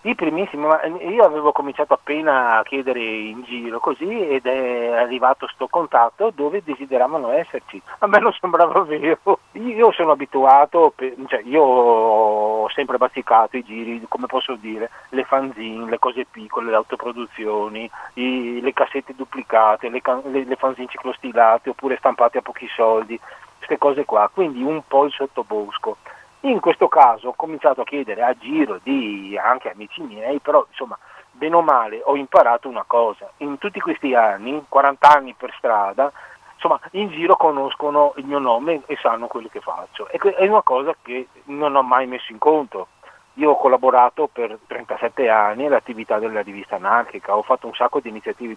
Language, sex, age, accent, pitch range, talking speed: Italian, male, 40-59, native, 120-150 Hz, 165 wpm